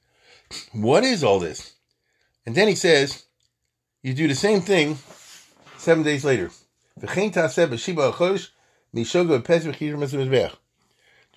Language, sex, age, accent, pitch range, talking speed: English, male, 40-59, American, 125-170 Hz, 130 wpm